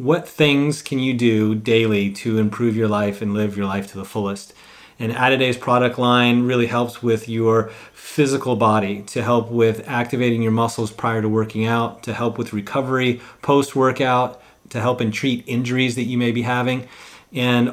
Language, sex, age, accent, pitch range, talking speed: English, male, 30-49, American, 115-130 Hz, 180 wpm